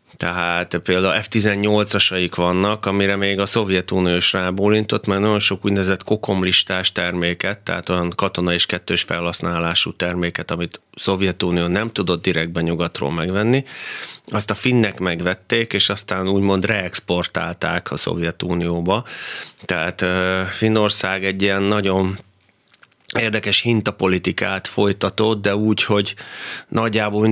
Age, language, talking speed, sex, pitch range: 30-49, Hungarian, 115 wpm, male, 90-105 Hz